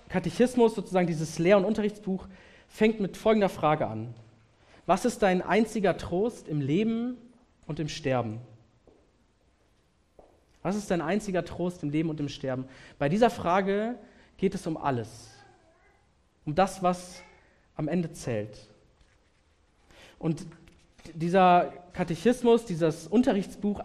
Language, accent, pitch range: German, German, 140-195 Hz